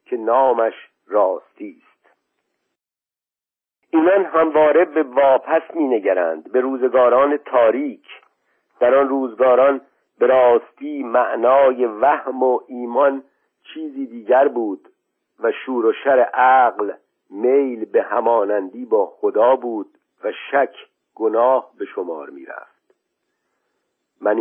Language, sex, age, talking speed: Persian, male, 50-69, 100 wpm